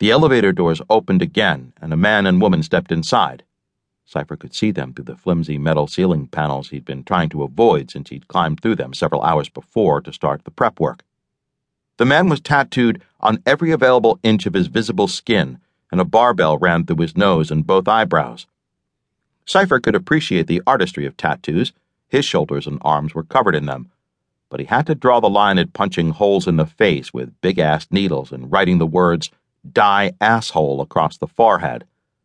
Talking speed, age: 190 wpm, 60-79